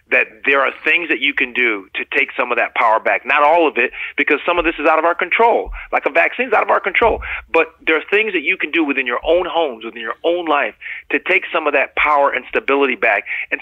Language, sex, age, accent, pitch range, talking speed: English, male, 30-49, American, 135-165 Hz, 275 wpm